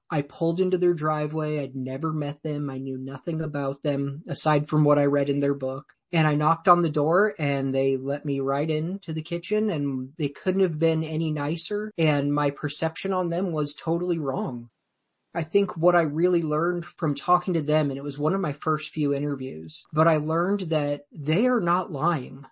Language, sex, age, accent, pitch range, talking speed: English, male, 30-49, American, 145-175 Hz, 210 wpm